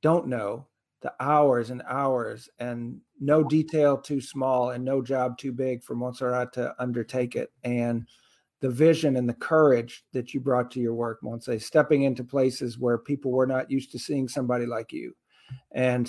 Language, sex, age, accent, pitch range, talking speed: English, male, 50-69, American, 120-140 Hz, 180 wpm